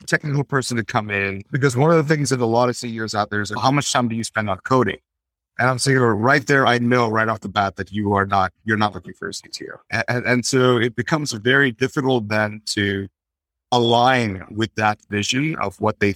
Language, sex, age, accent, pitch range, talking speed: English, male, 30-49, American, 105-135 Hz, 235 wpm